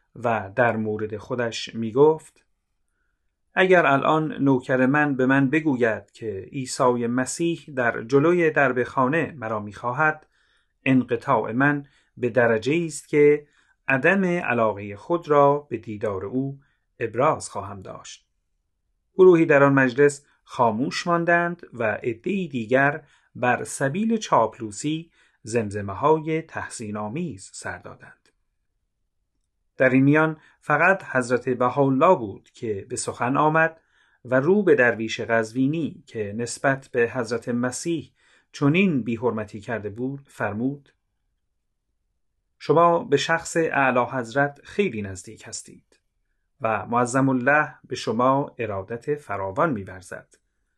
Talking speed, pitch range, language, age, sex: 120 wpm, 115-155 Hz, Persian, 30-49, male